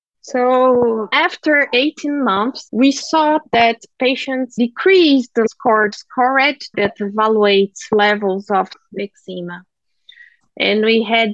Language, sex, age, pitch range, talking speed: English, female, 20-39, 205-255 Hz, 105 wpm